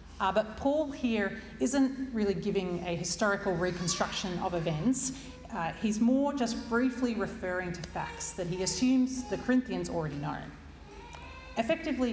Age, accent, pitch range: 40-59, Australian, 155-220 Hz